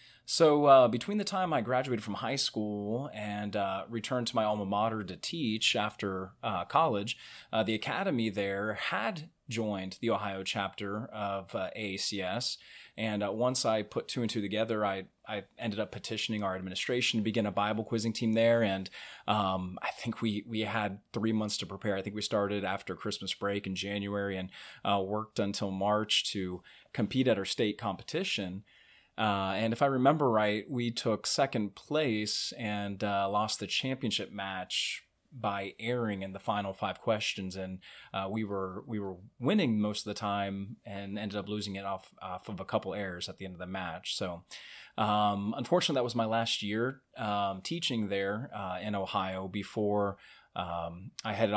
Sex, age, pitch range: male, 30-49, 100-115 Hz